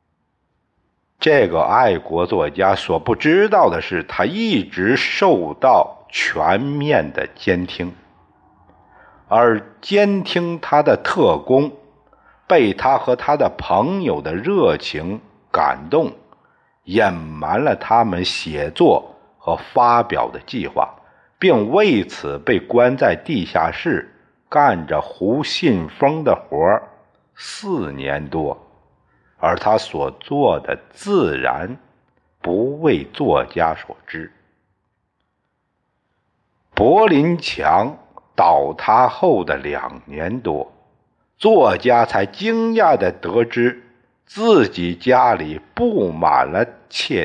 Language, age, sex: Chinese, 50-69, male